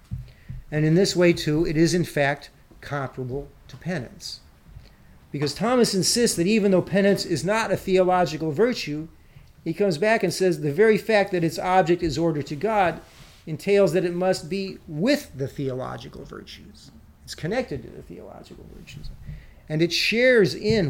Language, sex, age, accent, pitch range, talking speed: English, male, 50-69, American, 140-185 Hz, 165 wpm